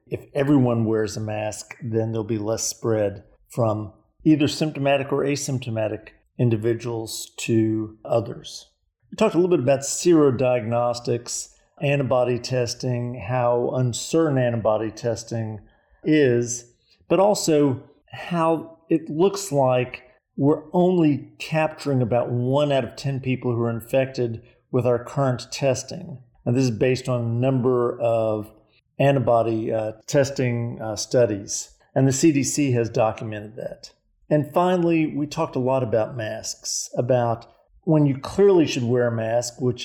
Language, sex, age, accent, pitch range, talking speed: English, male, 50-69, American, 115-145 Hz, 135 wpm